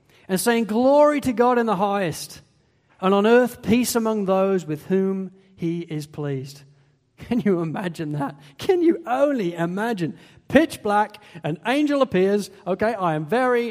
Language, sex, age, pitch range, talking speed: English, male, 40-59, 170-245 Hz, 160 wpm